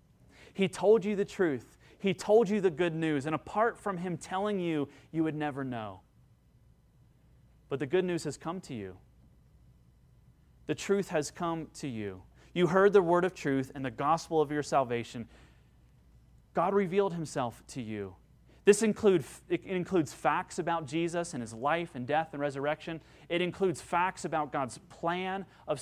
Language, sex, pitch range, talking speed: English, male, 155-195 Hz, 165 wpm